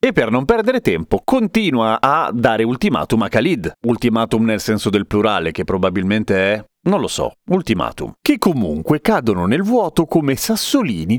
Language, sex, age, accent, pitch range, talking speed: Italian, male, 40-59, native, 120-200 Hz, 160 wpm